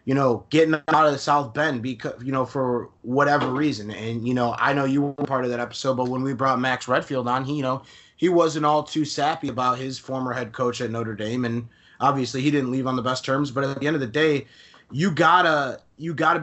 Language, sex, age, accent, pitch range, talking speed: English, male, 20-39, American, 125-150 Hz, 250 wpm